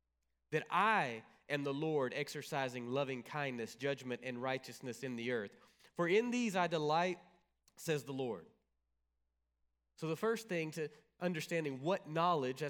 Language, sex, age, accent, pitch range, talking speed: English, male, 30-49, American, 140-185 Hz, 140 wpm